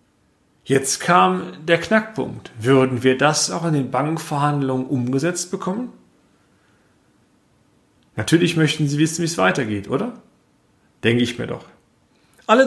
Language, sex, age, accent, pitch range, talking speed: German, male, 40-59, German, 135-170 Hz, 125 wpm